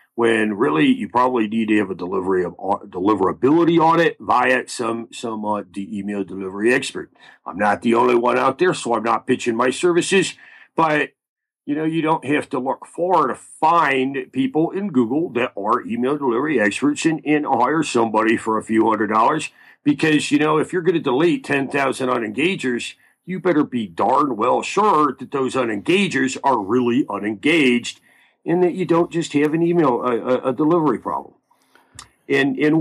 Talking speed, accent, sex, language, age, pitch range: 180 wpm, American, male, English, 50-69, 120-165 Hz